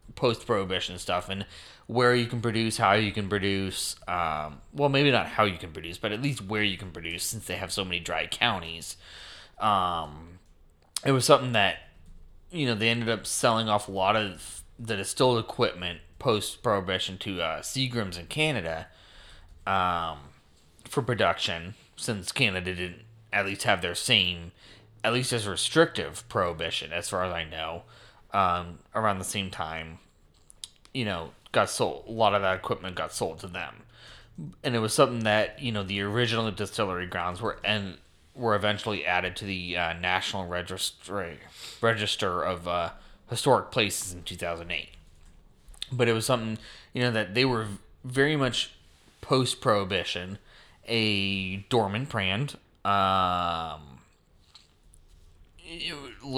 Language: English